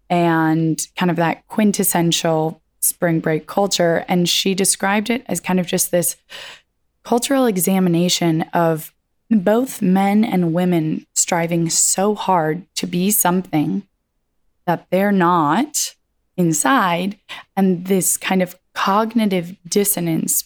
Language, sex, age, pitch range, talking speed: English, female, 20-39, 165-195 Hz, 115 wpm